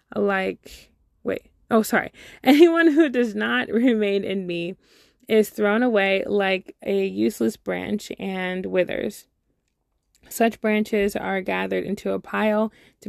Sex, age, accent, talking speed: female, 20-39, American, 130 wpm